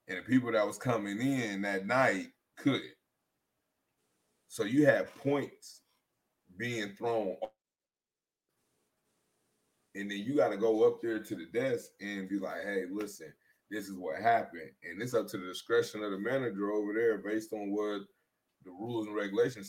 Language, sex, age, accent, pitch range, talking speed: English, male, 20-39, American, 95-115 Hz, 165 wpm